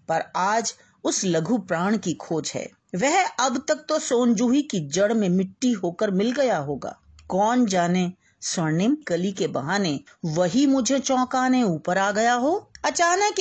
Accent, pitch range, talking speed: native, 185-290 Hz, 155 wpm